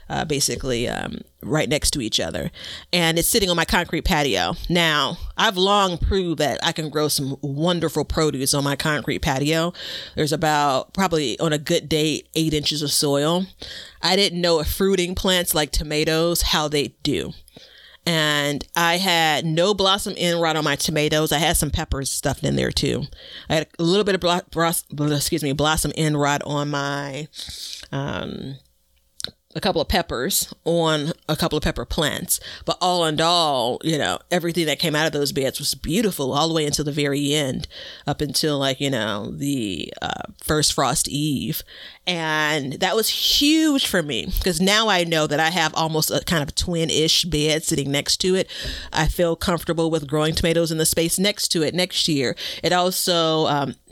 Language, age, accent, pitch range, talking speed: English, 30-49, American, 145-170 Hz, 185 wpm